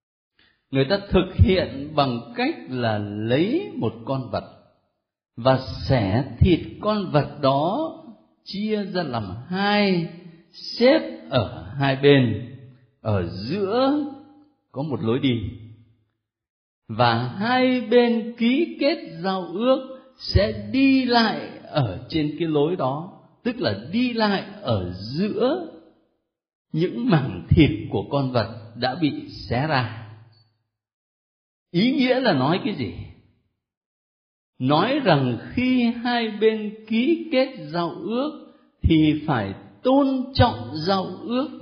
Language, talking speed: Vietnamese, 120 wpm